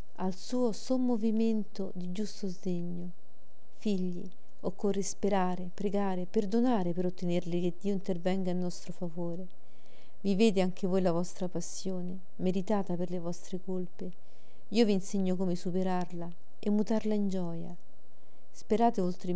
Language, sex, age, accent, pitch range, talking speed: Italian, female, 40-59, native, 175-200 Hz, 130 wpm